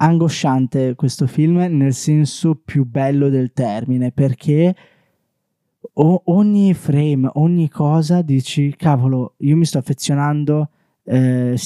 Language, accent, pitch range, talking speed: Italian, native, 130-165 Hz, 110 wpm